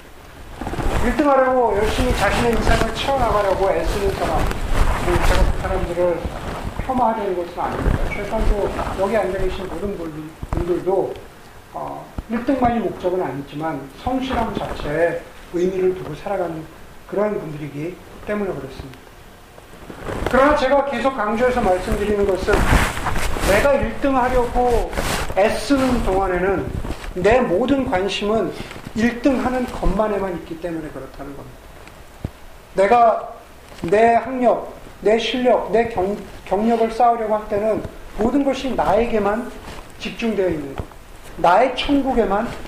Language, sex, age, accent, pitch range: Korean, male, 40-59, native, 165-230 Hz